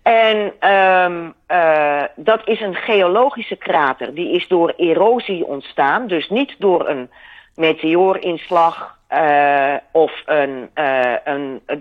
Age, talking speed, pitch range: 40-59, 100 wpm, 155-205 Hz